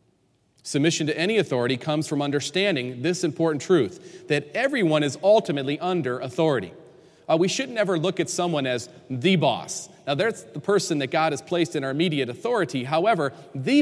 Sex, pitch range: male, 145-190 Hz